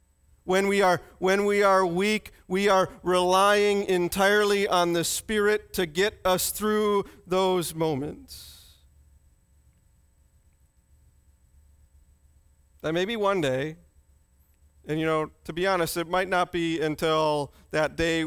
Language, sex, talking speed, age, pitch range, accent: English, male, 120 wpm, 40-59, 145-195 Hz, American